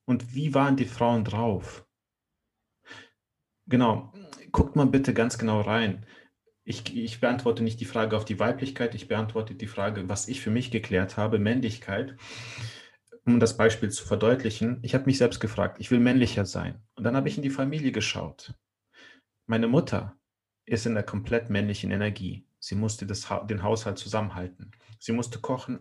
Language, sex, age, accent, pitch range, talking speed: German, male, 30-49, German, 110-145 Hz, 165 wpm